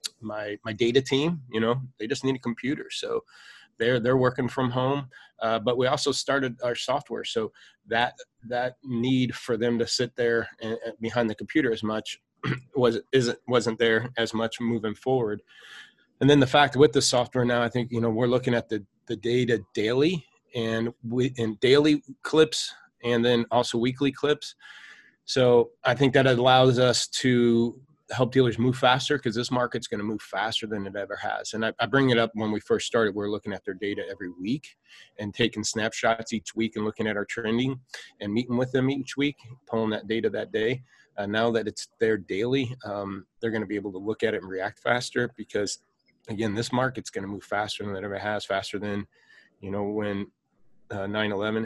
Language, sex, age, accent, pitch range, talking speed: English, male, 30-49, American, 110-130 Hz, 205 wpm